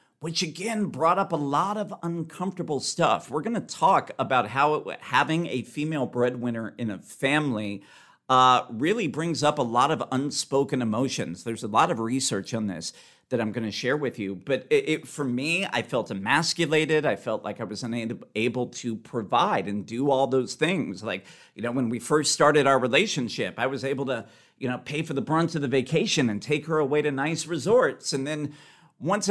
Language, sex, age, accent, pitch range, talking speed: English, male, 50-69, American, 130-170 Hz, 205 wpm